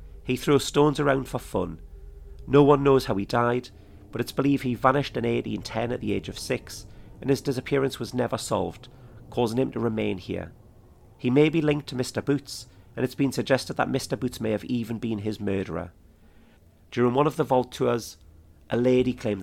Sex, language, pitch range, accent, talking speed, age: male, English, 100-125 Hz, British, 200 wpm, 40-59